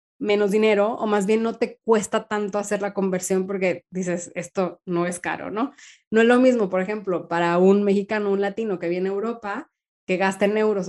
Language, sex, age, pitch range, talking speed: English, female, 20-39, 195-240 Hz, 210 wpm